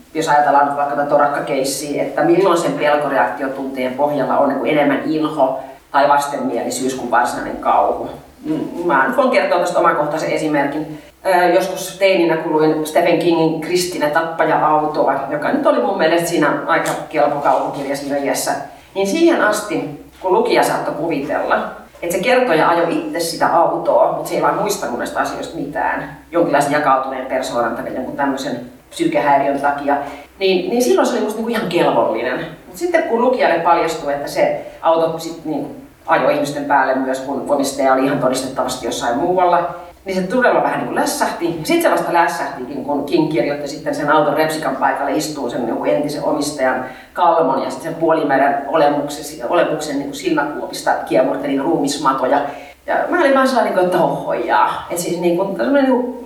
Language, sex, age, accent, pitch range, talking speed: Finnish, female, 30-49, native, 145-195 Hz, 145 wpm